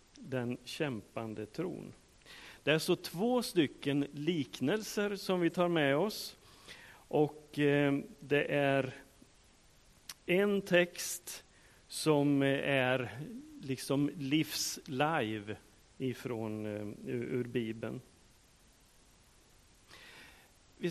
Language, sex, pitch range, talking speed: Swedish, male, 120-175 Hz, 85 wpm